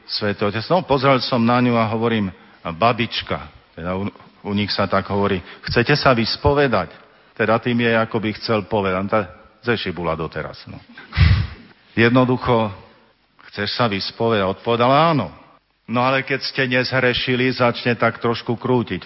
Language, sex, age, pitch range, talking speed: Slovak, male, 50-69, 95-120 Hz, 140 wpm